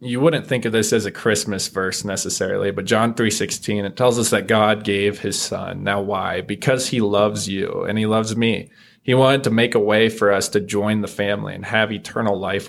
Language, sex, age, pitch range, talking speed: English, male, 20-39, 105-125 Hz, 220 wpm